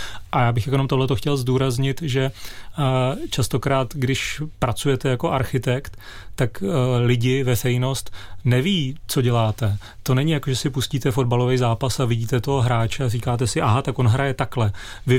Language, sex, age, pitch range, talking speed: Czech, male, 30-49, 125-140 Hz, 160 wpm